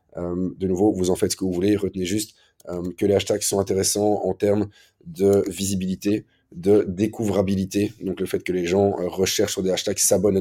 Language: French